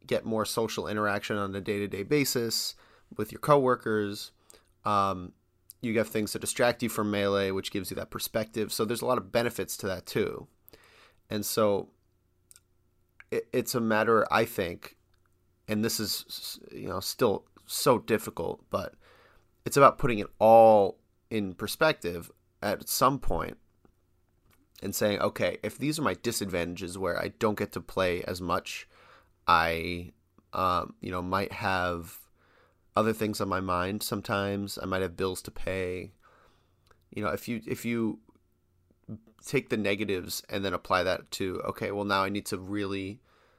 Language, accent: English, American